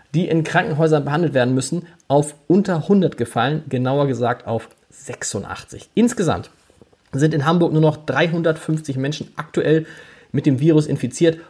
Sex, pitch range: male, 130-175 Hz